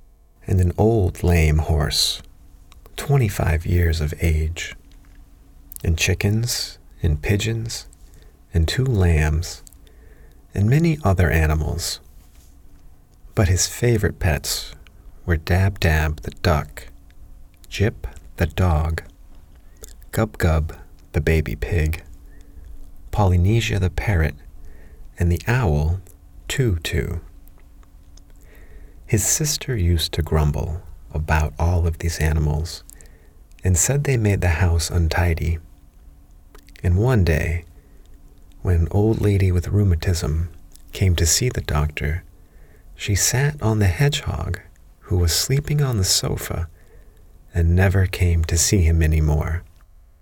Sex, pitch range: male, 75-95 Hz